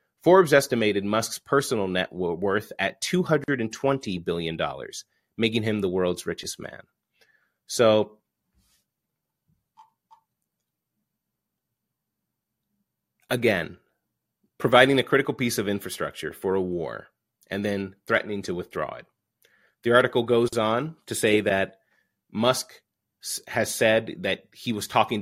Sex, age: male, 30-49